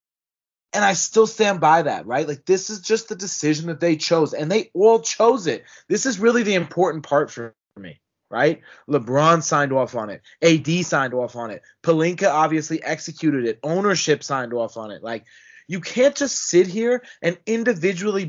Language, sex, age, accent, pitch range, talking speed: English, male, 20-39, American, 155-220 Hz, 185 wpm